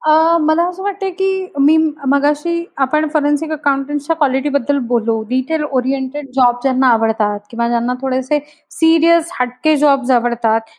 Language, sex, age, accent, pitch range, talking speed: Marathi, female, 10-29, native, 265-325 Hz, 130 wpm